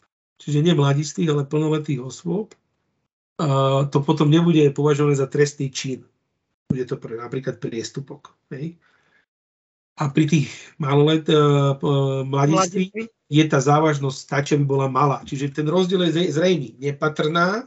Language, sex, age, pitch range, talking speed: Slovak, male, 40-59, 135-160 Hz, 130 wpm